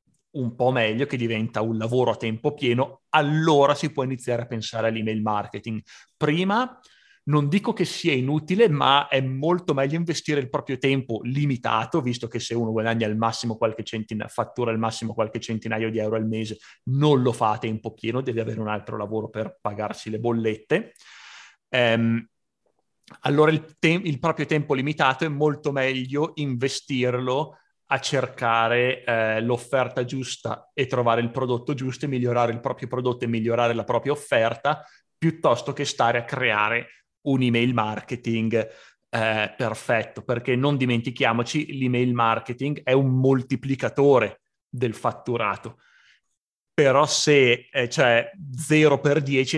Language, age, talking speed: Italian, 30-49, 150 wpm